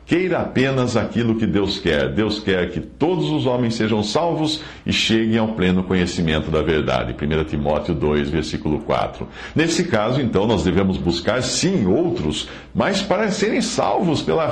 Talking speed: 160 wpm